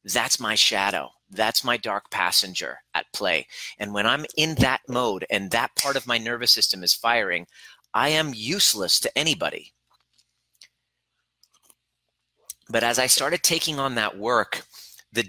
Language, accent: English, American